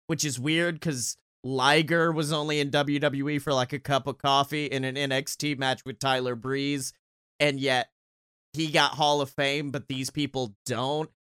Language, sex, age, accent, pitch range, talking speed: English, male, 30-49, American, 150-230 Hz, 175 wpm